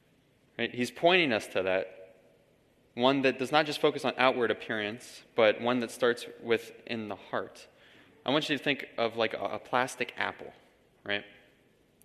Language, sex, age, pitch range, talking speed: English, male, 20-39, 100-135 Hz, 170 wpm